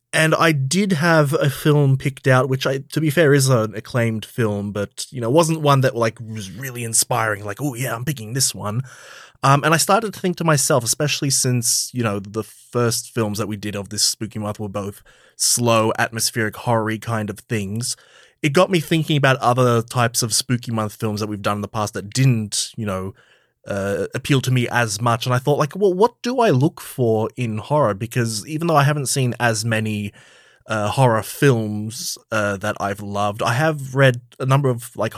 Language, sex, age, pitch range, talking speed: English, male, 20-39, 110-140 Hz, 215 wpm